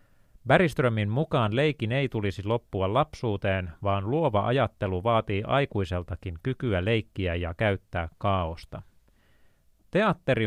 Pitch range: 90-125 Hz